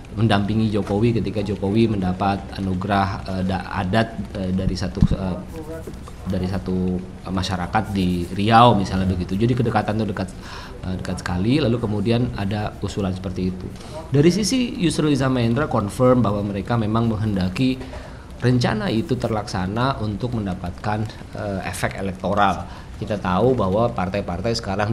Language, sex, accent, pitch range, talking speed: Indonesian, male, native, 95-120 Hz, 120 wpm